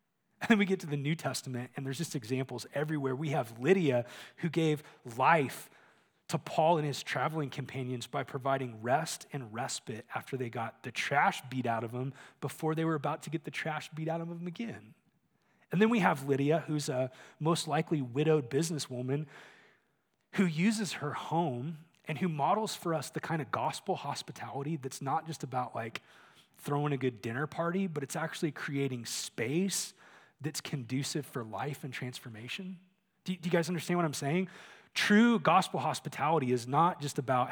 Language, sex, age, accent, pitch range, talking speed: English, male, 30-49, American, 130-170 Hz, 180 wpm